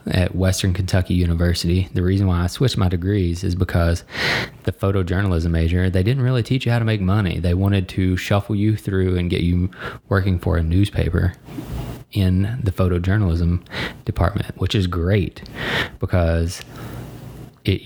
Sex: male